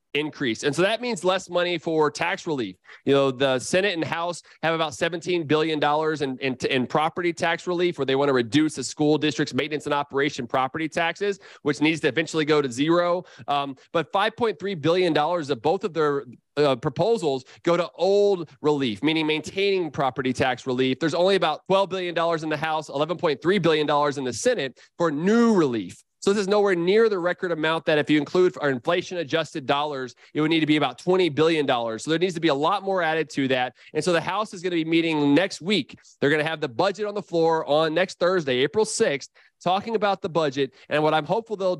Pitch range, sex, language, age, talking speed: 145-180 Hz, male, English, 30-49, 210 wpm